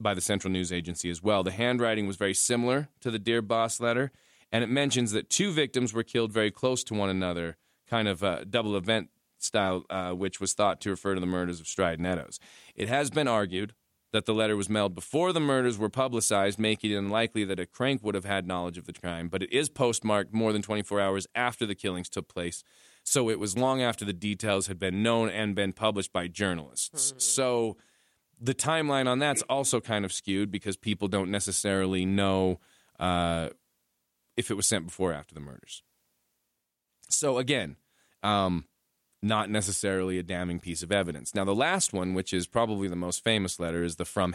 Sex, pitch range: male, 90-115 Hz